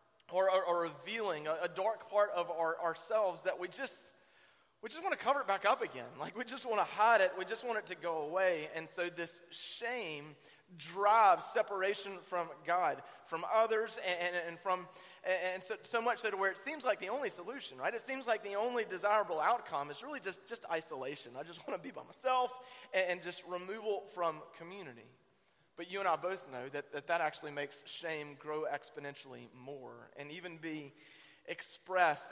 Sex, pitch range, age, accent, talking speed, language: male, 150-195 Hz, 30-49, American, 195 wpm, English